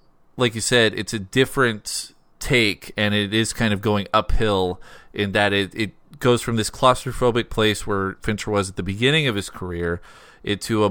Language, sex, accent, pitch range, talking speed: English, male, American, 100-125 Hz, 185 wpm